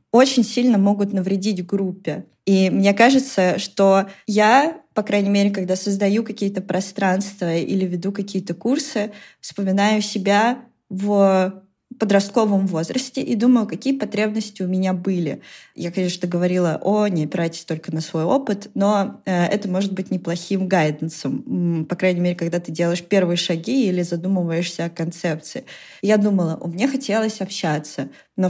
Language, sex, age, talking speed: Russian, female, 20-39, 145 wpm